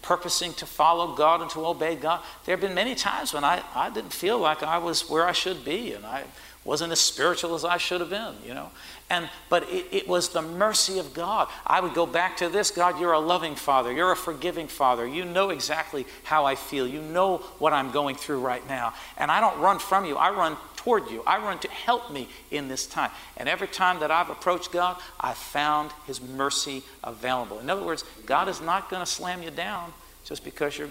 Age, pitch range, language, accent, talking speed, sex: 50-69, 140-180 Hz, English, American, 230 wpm, male